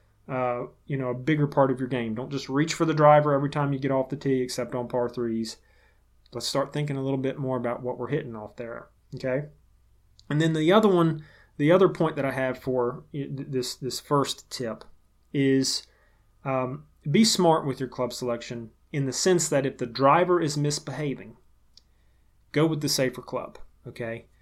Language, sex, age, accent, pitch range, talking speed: English, male, 30-49, American, 125-150 Hz, 195 wpm